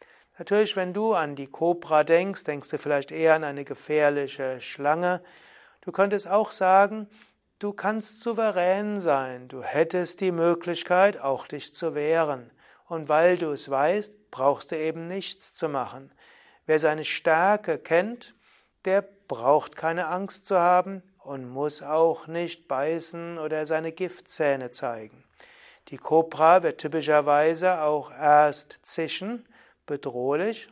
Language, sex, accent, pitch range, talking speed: German, male, German, 145-185 Hz, 135 wpm